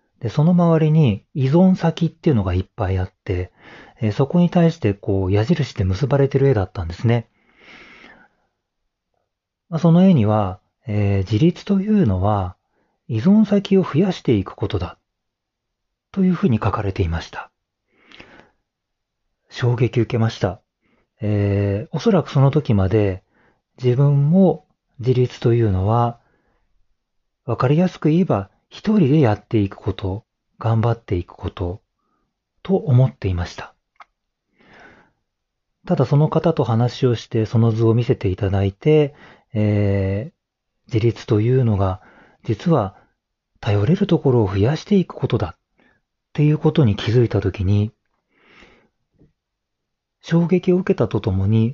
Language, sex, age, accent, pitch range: Japanese, male, 40-59, native, 100-160 Hz